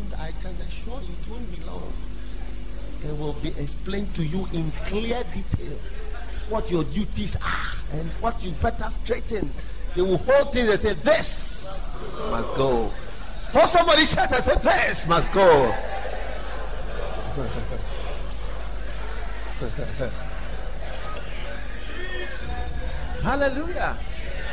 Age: 50-69